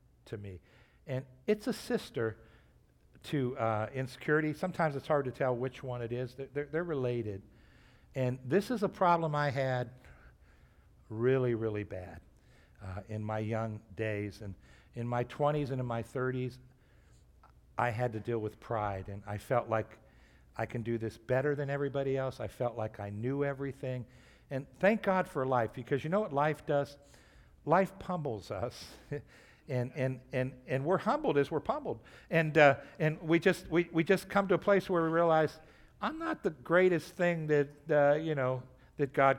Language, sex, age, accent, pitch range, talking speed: English, male, 60-79, American, 115-150 Hz, 180 wpm